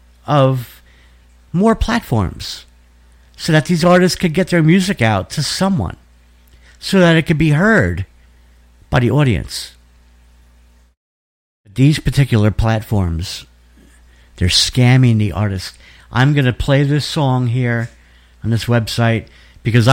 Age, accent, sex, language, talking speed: 50-69, American, male, English, 125 wpm